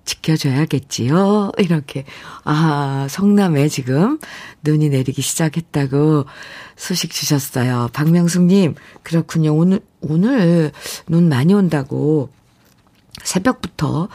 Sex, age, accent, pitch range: female, 50-69, native, 145-210 Hz